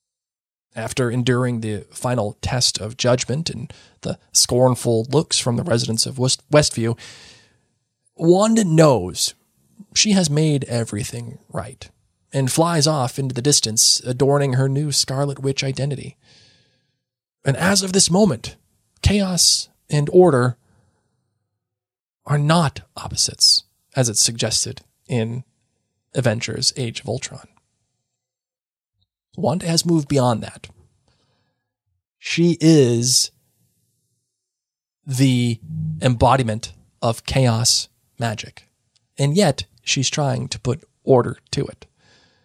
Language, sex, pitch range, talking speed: English, male, 115-145 Hz, 105 wpm